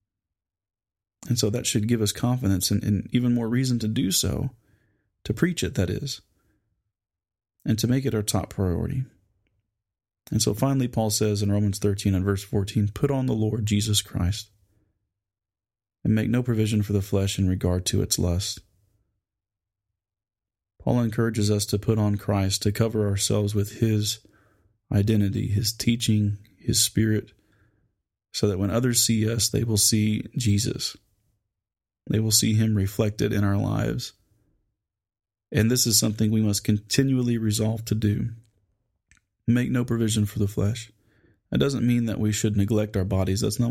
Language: English